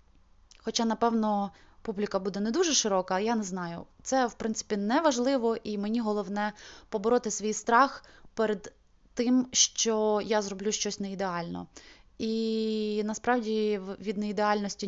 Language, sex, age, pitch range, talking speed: Ukrainian, female, 20-39, 195-225 Hz, 130 wpm